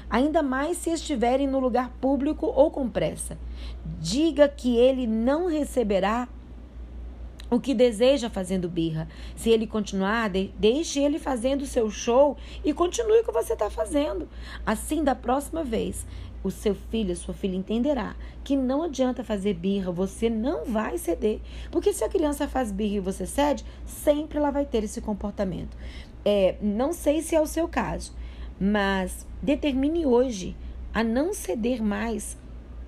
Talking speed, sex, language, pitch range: 155 wpm, female, Portuguese, 185-265 Hz